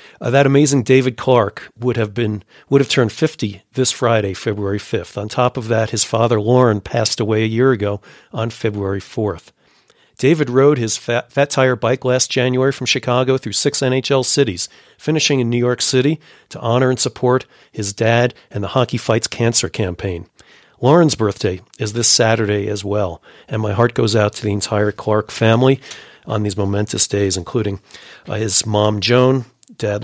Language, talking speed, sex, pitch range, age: English, 180 wpm, male, 105-125 Hz, 50-69